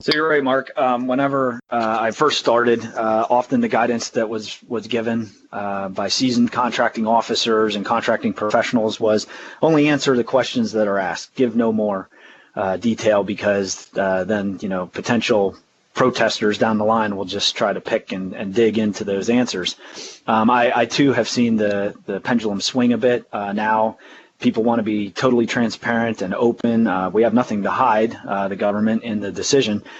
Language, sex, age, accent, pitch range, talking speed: English, male, 30-49, American, 110-125 Hz, 190 wpm